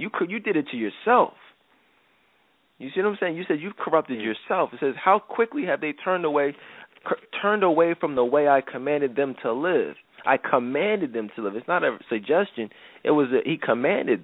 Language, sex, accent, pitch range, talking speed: English, male, American, 130-180 Hz, 210 wpm